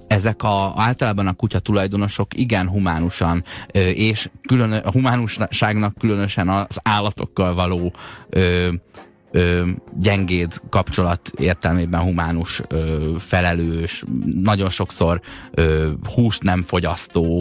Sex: male